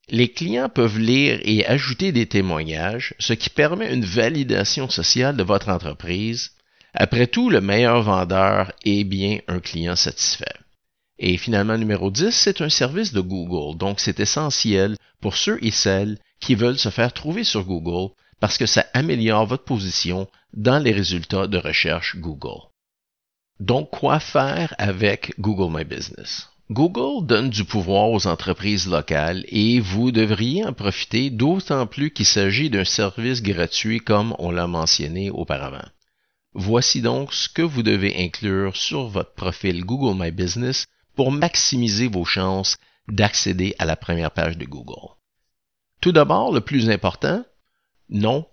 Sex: male